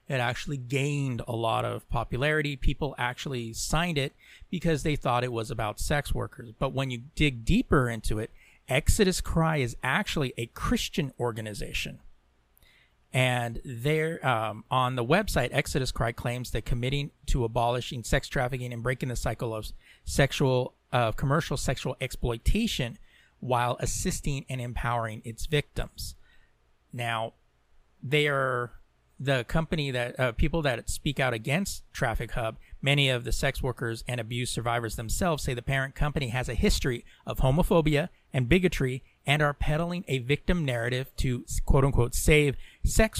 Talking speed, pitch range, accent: 150 wpm, 120-145 Hz, American